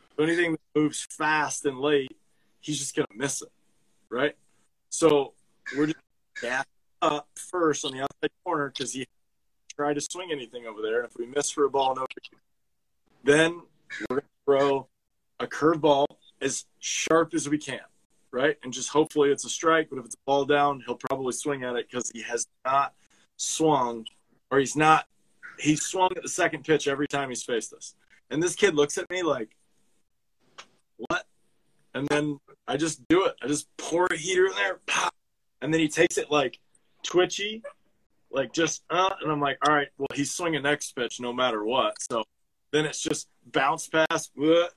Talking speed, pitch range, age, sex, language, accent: 190 wpm, 140-170 Hz, 20-39, male, English, American